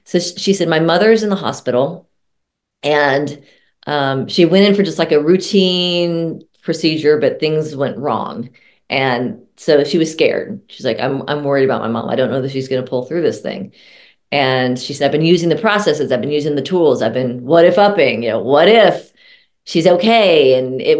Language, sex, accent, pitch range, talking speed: English, female, American, 145-180 Hz, 210 wpm